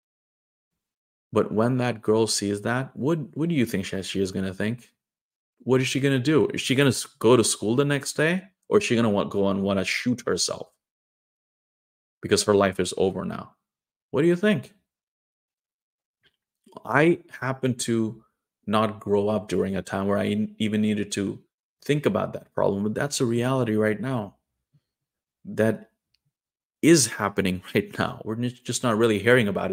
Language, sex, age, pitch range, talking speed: English, male, 30-49, 100-125 Hz, 180 wpm